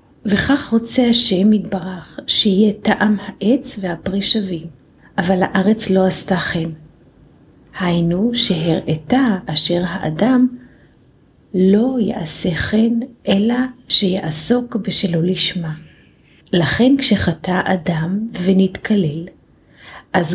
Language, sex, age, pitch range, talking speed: Hebrew, female, 40-59, 170-210 Hz, 90 wpm